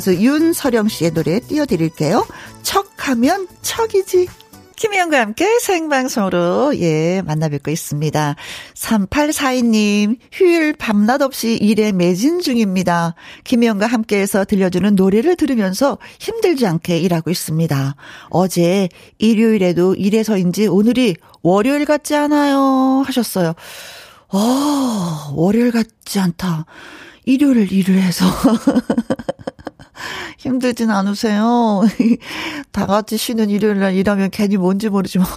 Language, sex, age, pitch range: Korean, female, 40-59, 180-250 Hz